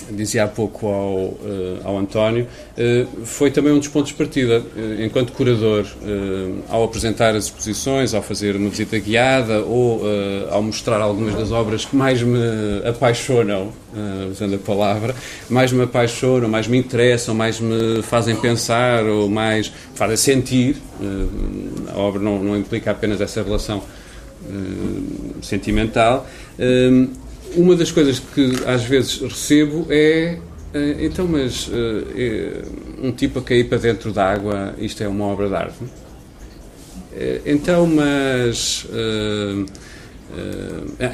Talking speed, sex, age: 130 wpm, male, 40-59